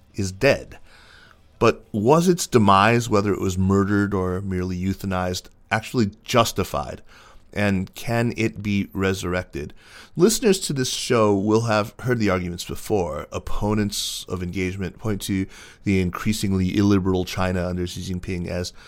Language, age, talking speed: English, 30-49, 135 wpm